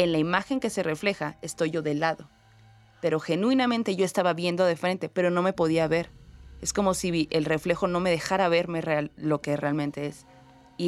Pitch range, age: 155-200 Hz, 20-39